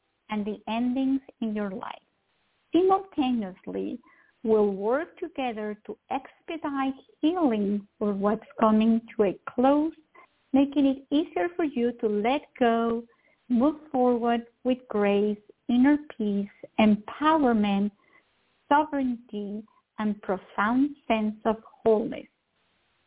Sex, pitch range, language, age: female, 215-270 Hz, English, 50-69